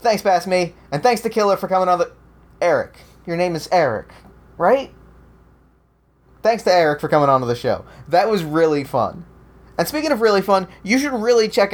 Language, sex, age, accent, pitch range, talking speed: English, male, 20-39, American, 155-195 Hz, 200 wpm